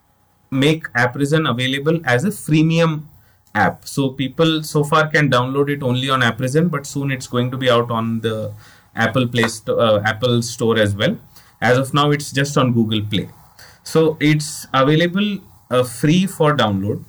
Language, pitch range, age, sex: English, 120-155 Hz, 20-39, male